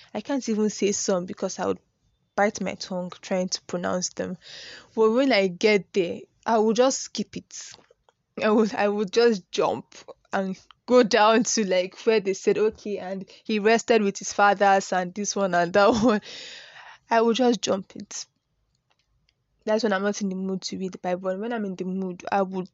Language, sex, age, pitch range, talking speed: English, female, 10-29, 190-220 Hz, 200 wpm